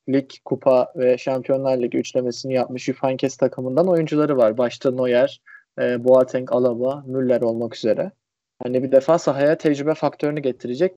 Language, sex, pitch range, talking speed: Turkish, male, 125-145 Hz, 140 wpm